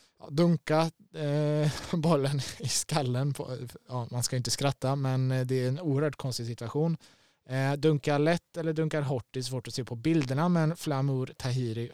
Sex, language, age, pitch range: male, Swedish, 20-39, 120-155 Hz